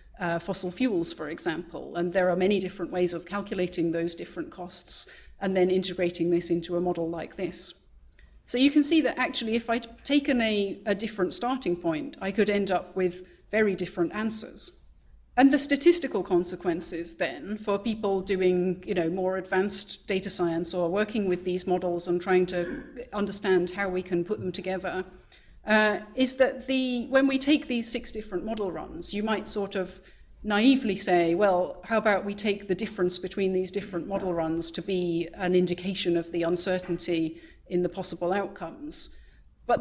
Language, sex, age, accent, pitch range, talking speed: English, female, 40-59, British, 180-215 Hz, 180 wpm